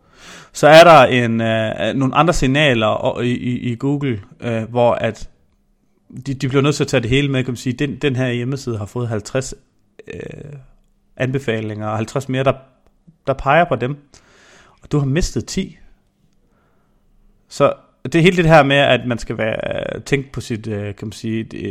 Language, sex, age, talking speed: Danish, male, 30-49, 175 wpm